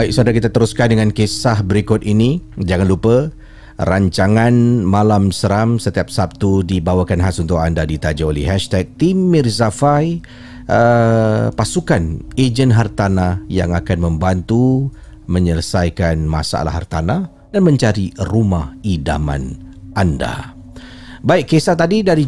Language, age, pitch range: Malay, 40-59, 95-130 Hz